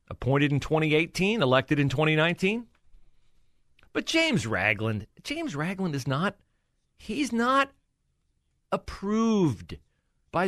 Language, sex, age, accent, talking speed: English, male, 40-59, American, 95 wpm